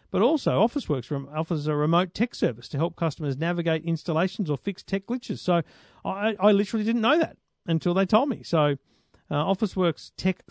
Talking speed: 190 wpm